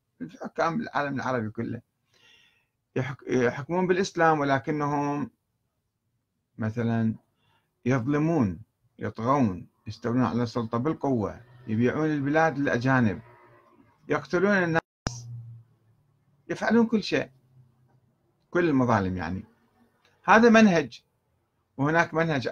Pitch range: 115-145 Hz